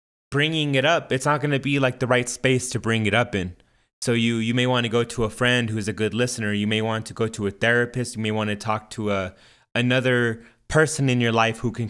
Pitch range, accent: 110-130 Hz, American